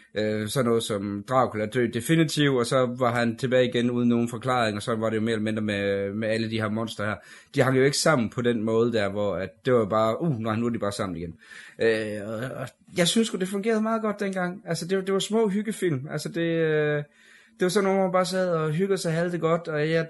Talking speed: 250 wpm